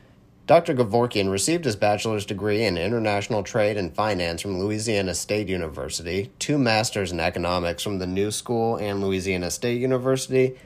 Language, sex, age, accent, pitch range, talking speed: English, male, 30-49, American, 95-130 Hz, 150 wpm